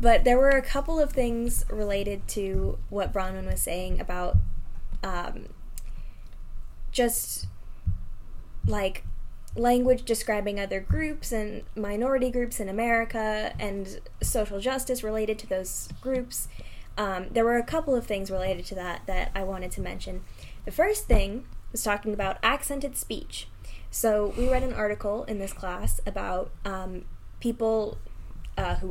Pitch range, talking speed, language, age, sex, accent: 190-225 Hz, 145 wpm, English, 10-29, female, American